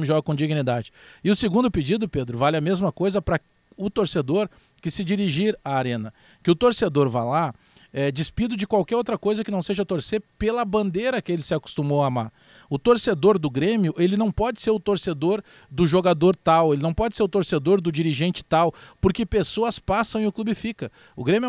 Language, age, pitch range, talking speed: Portuguese, 50-69, 150-215 Hz, 205 wpm